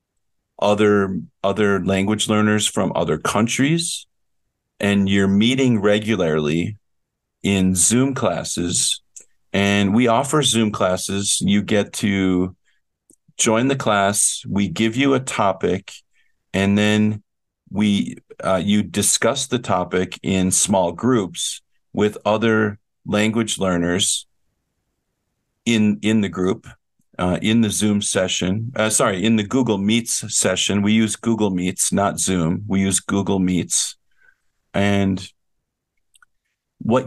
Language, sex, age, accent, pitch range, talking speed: English, male, 50-69, American, 95-110 Hz, 120 wpm